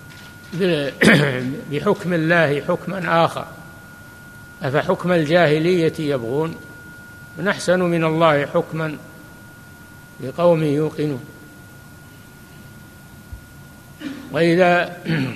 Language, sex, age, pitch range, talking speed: Arabic, male, 60-79, 145-185 Hz, 55 wpm